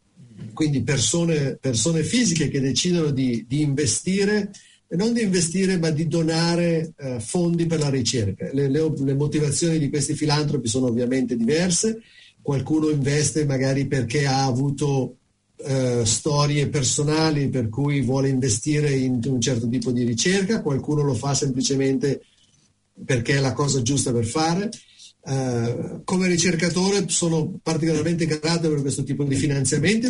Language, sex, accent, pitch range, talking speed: Italian, male, native, 130-160 Hz, 140 wpm